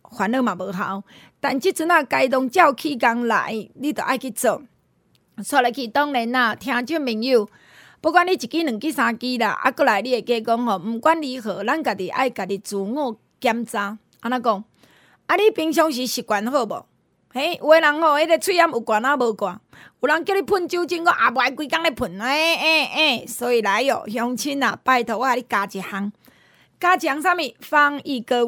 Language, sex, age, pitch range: Chinese, female, 20-39, 230-310 Hz